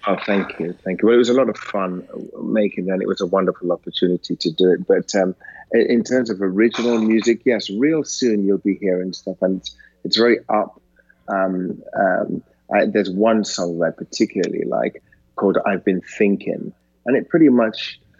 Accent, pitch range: British, 95-110 Hz